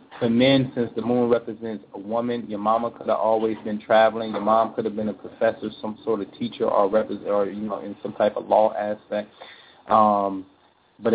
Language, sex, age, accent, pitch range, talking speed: English, male, 30-49, American, 100-115 Hz, 205 wpm